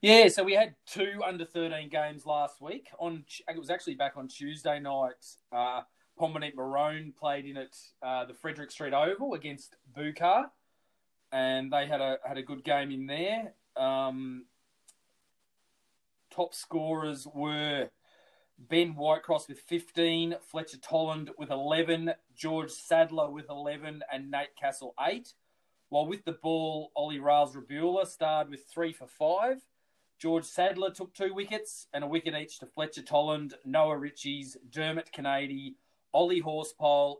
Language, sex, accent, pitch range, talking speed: English, male, Australian, 145-170 Hz, 145 wpm